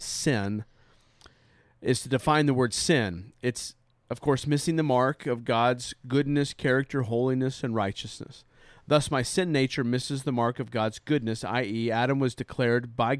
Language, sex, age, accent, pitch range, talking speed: English, male, 40-59, American, 110-135 Hz, 160 wpm